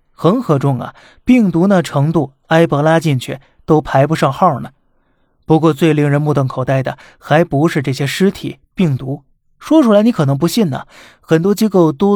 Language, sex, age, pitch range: Chinese, male, 20-39, 135-170 Hz